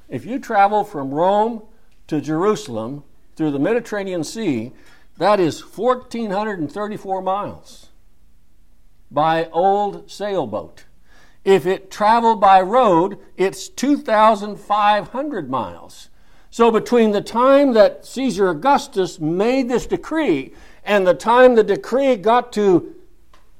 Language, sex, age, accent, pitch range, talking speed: English, male, 60-79, American, 190-245 Hz, 110 wpm